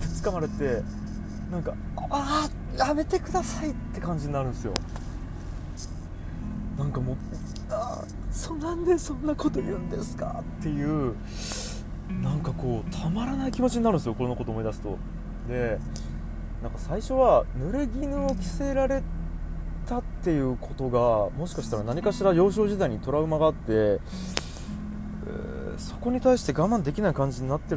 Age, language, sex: 20-39, Japanese, male